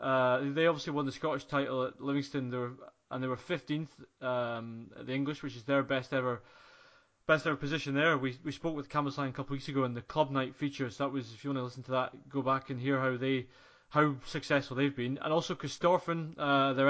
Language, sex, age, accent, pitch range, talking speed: English, male, 20-39, British, 130-150 Hz, 240 wpm